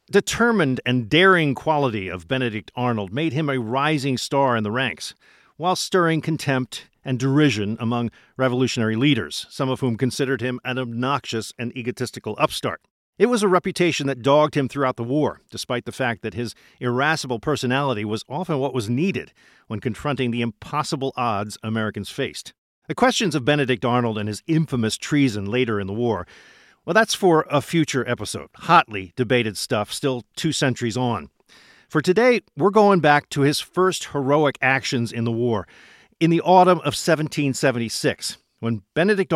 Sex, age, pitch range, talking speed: male, 50-69, 120-155 Hz, 165 wpm